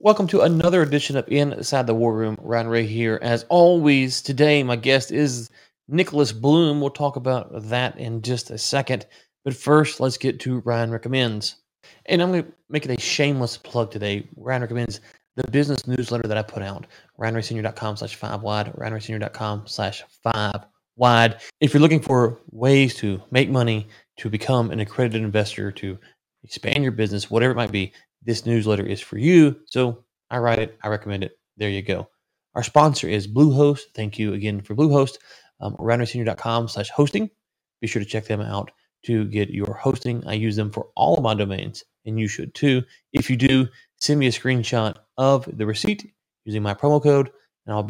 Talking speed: 185 wpm